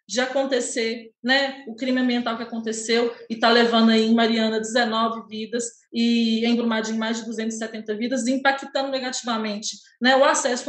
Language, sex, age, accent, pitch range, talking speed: Portuguese, female, 20-39, Brazilian, 210-255 Hz, 150 wpm